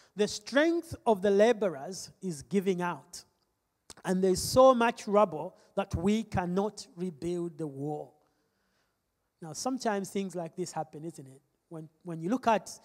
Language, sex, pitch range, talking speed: English, male, 170-220 Hz, 150 wpm